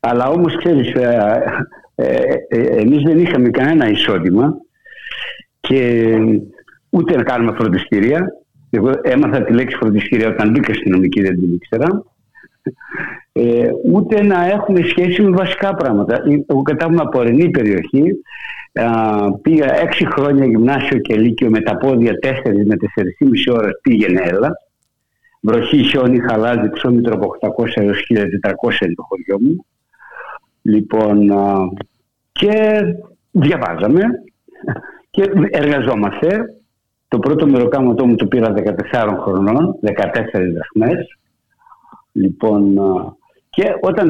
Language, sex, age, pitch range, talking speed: Greek, male, 60-79, 110-170 Hz, 110 wpm